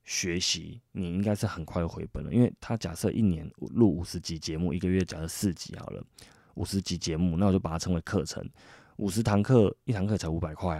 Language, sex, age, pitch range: Chinese, male, 20-39, 85-110 Hz